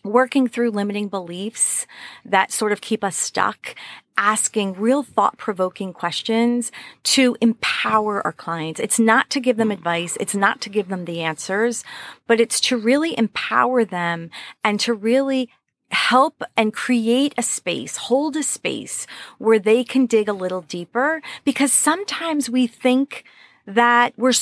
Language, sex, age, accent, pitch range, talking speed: English, female, 30-49, American, 205-265 Hz, 150 wpm